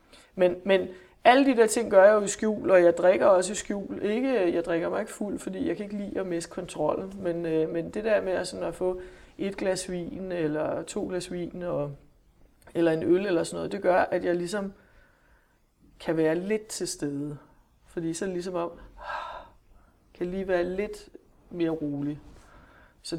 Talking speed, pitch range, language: 195 wpm, 150-185 Hz, Danish